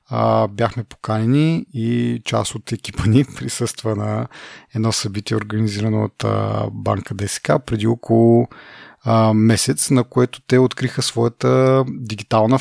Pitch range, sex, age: 110-130 Hz, male, 30-49